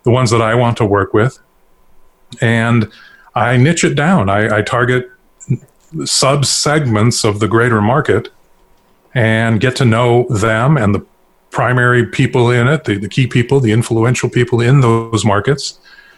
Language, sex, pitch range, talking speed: English, male, 110-130 Hz, 155 wpm